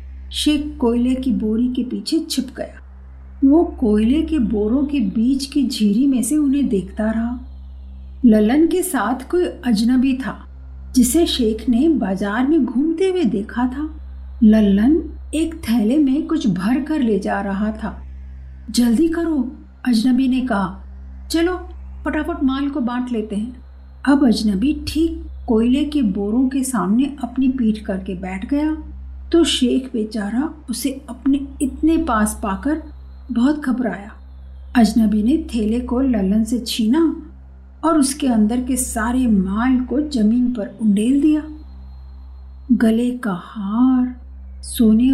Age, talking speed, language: 50-69, 140 wpm, Hindi